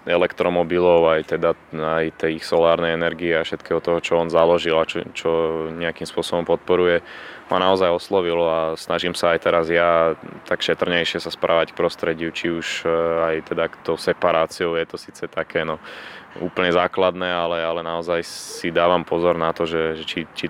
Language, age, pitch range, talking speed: Slovak, 20-39, 80-85 Hz, 175 wpm